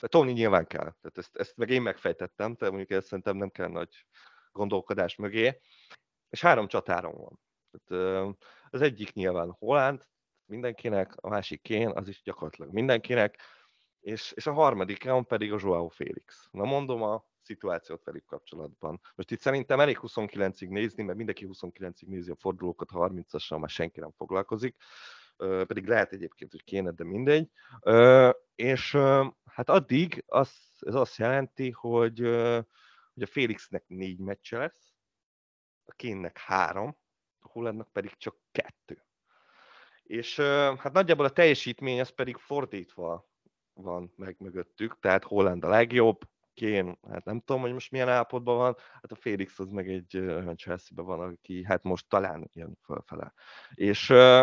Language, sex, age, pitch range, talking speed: Hungarian, male, 30-49, 95-125 Hz, 155 wpm